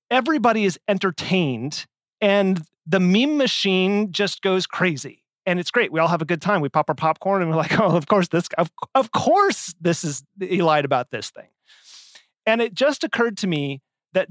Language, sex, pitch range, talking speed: English, male, 145-195 Hz, 195 wpm